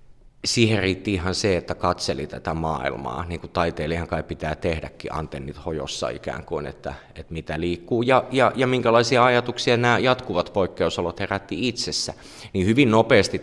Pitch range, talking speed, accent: 85-100 Hz, 150 wpm, native